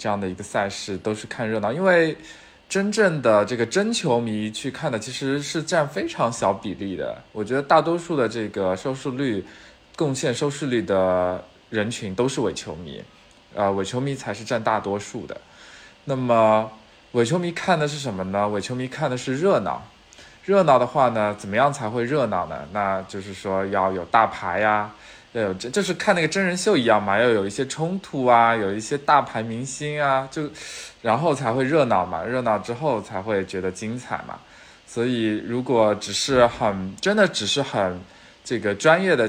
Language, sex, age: Chinese, male, 20-39